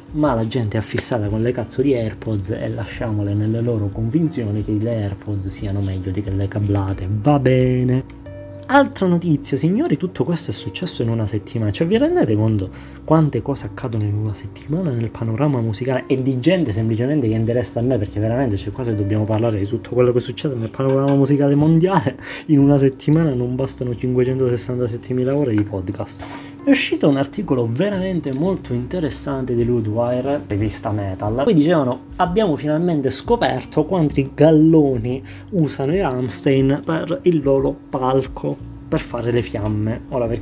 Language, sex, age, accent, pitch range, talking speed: Italian, male, 20-39, native, 105-140 Hz, 170 wpm